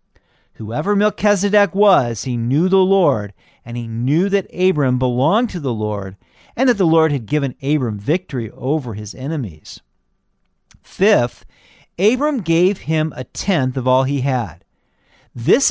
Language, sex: English, male